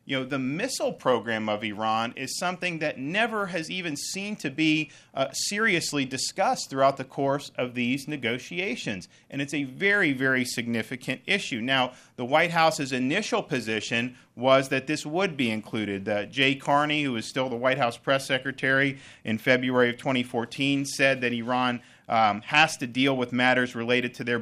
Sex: male